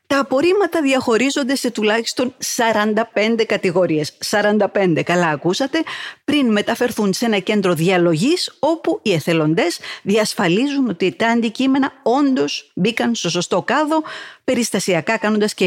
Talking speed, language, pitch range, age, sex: 120 wpm, Greek, 170-270 Hz, 50-69, female